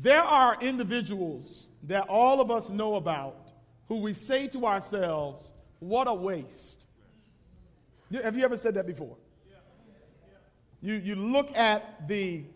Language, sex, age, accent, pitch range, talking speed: English, male, 40-59, American, 175-230 Hz, 135 wpm